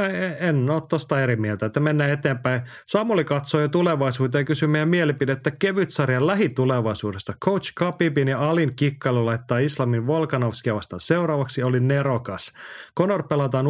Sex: male